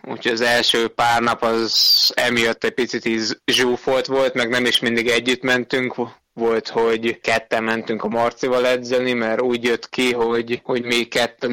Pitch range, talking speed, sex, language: 115-125 Hz, 165 wpm, male, Hungarian